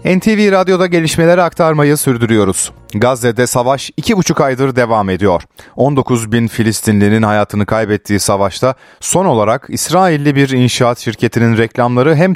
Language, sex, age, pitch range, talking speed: Turkish, male, 40-59, 105-160 Hz, 115 wpm